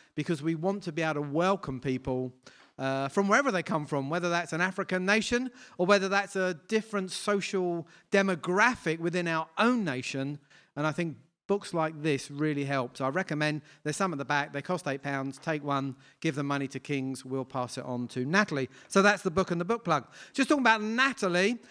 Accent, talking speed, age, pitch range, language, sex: British, 205 wpm, 40-59, 155-200 Hz, English, male